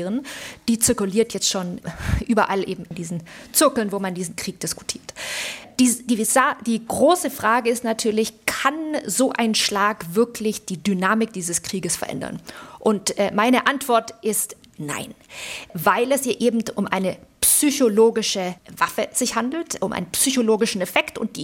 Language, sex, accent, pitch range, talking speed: German, female, German, 190-250 Hz, 150 wpm